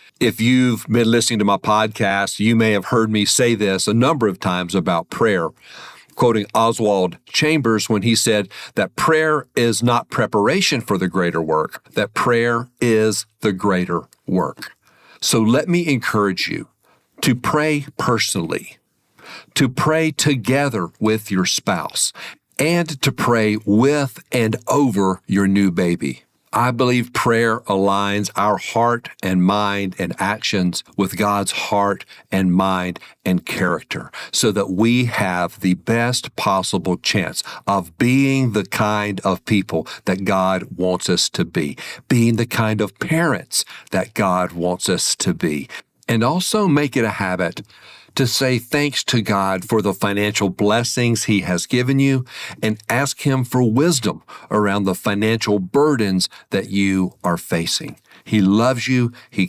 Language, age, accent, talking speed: English, 50-69, American, 150 wpm